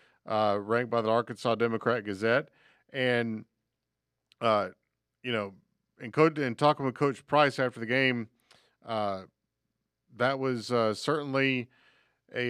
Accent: American